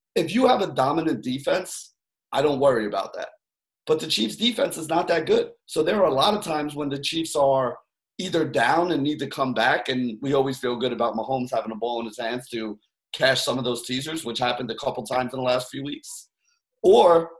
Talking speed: 230 wpm